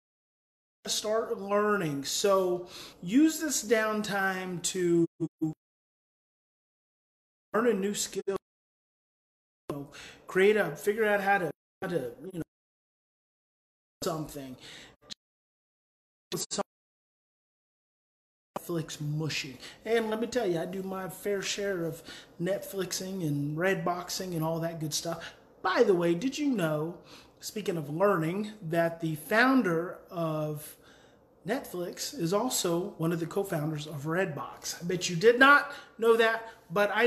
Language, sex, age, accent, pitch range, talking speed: English, male, 30-49, American, 165-215 Hz, 125 wpm